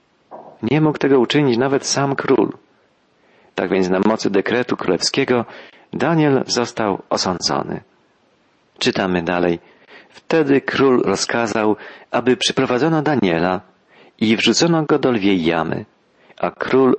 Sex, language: male, Polish